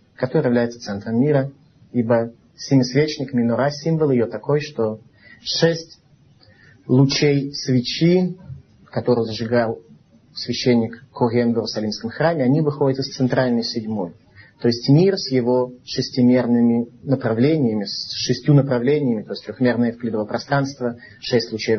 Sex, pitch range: male, 120-155 Hz